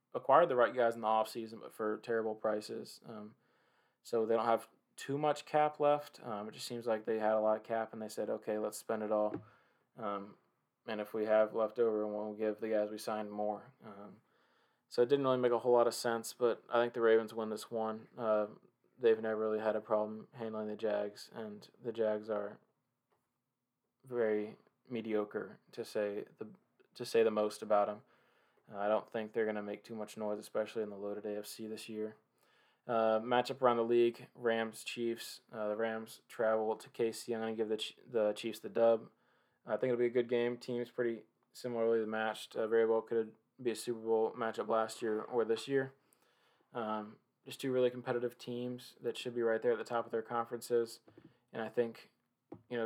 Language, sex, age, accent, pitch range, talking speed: English, male, 20-39, American, 110-120 Hz, 205 wpm